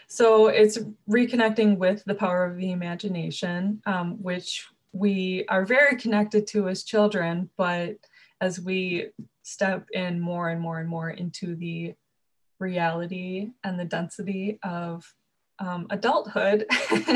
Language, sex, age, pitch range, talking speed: English, female, 20-39, 180-210 Hz, 130 wpm